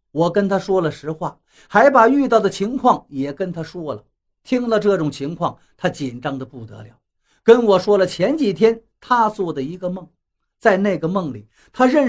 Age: 50-69